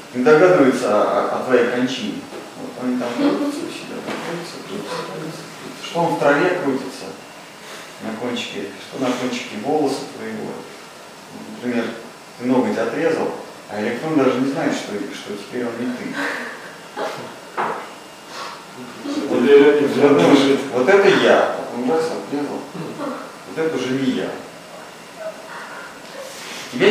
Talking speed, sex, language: 125 wpm, male, Russian